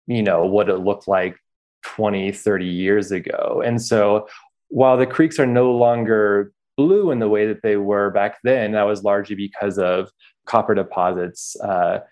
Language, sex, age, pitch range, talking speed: English, male, 20-39, 100-115 Hz, 175 wpm